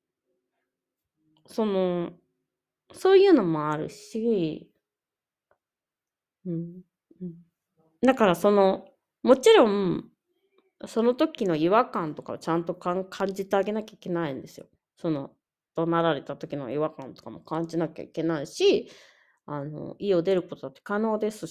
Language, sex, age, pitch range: Japanese, female, 30-49, 165-265 Hz